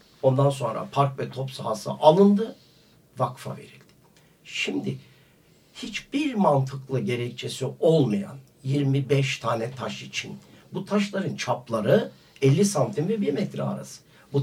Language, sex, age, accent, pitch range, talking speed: Turkish, male, 60-79, native, 140-200 Hz, 115 wpm